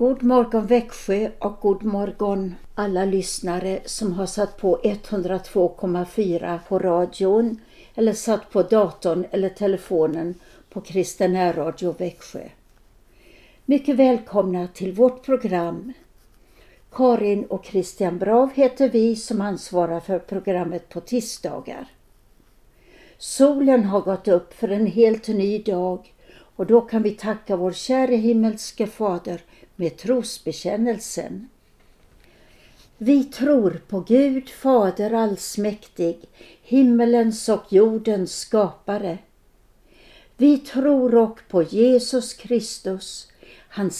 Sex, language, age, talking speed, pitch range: female, Swedish, 60-79, 105 wpm, 185-235 Hz